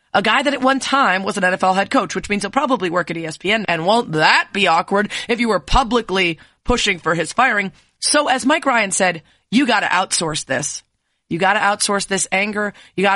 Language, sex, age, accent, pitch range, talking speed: English, female, 30-49, American, 190-265 Hz, 225 wpm